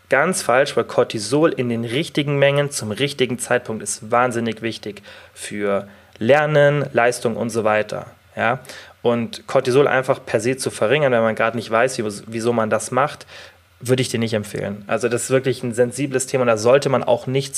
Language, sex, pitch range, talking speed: German, male, 110-130 Hz, 185 wpm